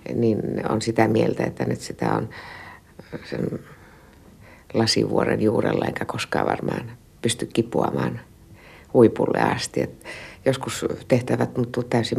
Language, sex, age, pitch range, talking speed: Finnish, female, 60-79, 110-130 Hz, 115 wpm